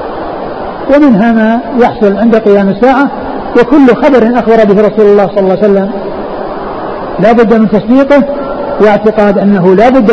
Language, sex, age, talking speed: Arabic, male, 50-69, 140 wpm